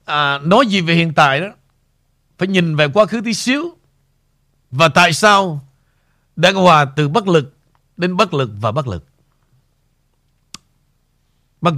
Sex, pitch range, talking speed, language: male, 135-200 Hz, 150 wpm, Vietnamese